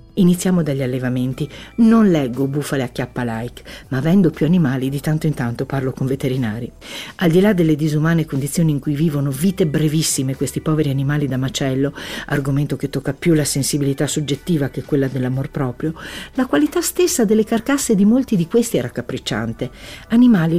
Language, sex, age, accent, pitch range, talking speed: Italian, female, 50-69, native, 145-215 Hz, 170 wpm